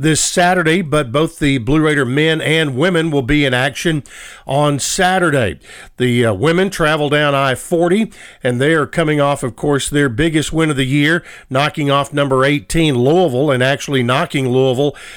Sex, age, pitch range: male, 50-69, 140-170 Hz